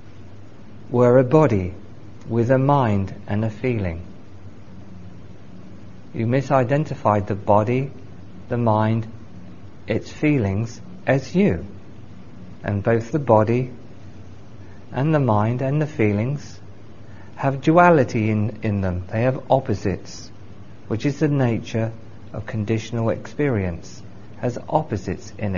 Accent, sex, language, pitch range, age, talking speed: British, male, English, 105-130 Hz, 40-59, 110 wpm